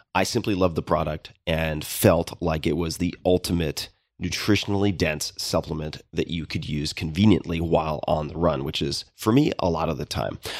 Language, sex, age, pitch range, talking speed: English, male, 30-49, 85-105 Hz, 185 wpm